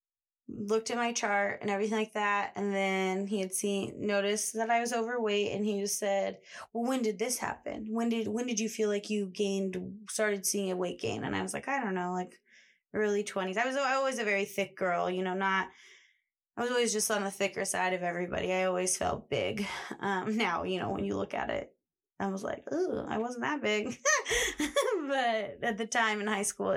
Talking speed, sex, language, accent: 220 wpm, female, English, American